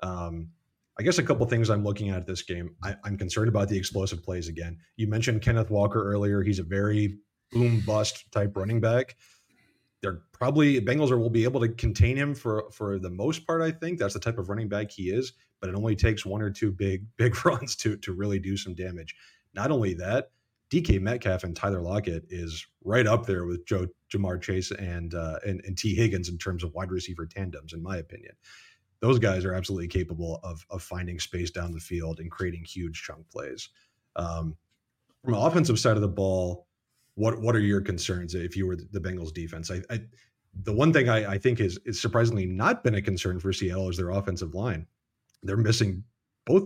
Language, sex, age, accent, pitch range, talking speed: English, male, 30-49, American, 90-115 Hz, 210 wpm